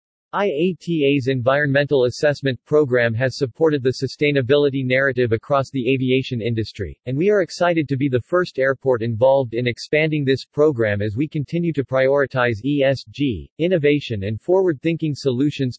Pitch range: 120-150 Hz